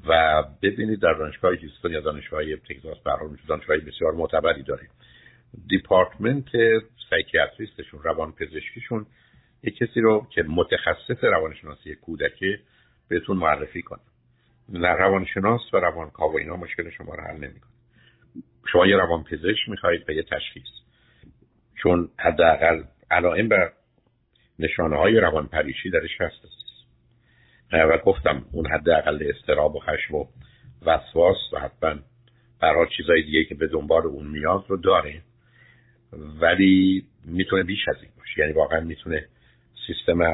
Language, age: Persian, 60-79